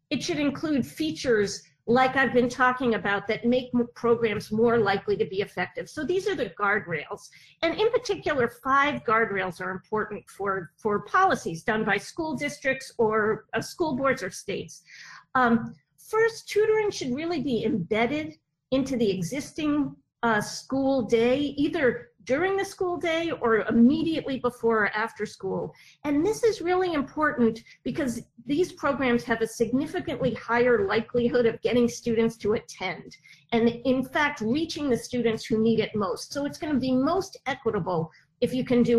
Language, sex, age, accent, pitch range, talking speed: English, female, 50-69, American, 220-290 Hz, 160 wpm